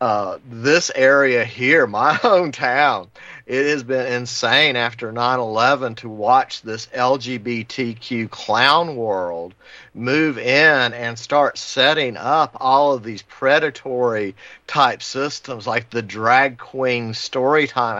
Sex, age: male, 50-69